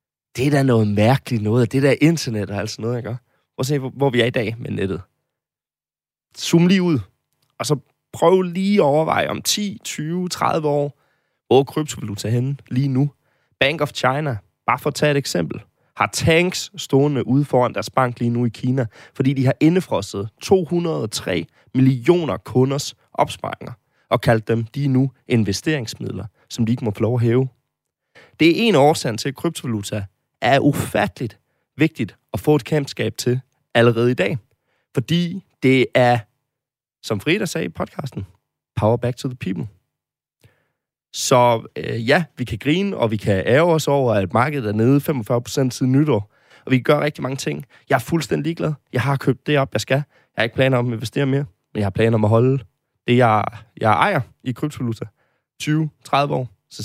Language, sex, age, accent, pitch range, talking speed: Danish, male, 20-39, native, 115-145 Hz, 185 wpm